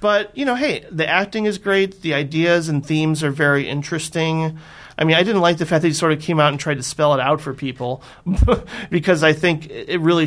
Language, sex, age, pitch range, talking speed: English, male, 30-49, 140-175 Hz, 240 wpm